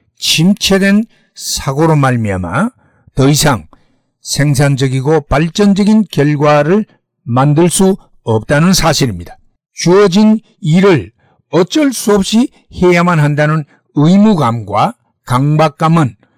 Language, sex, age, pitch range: Korean, male, 60-79, 130-190 Hz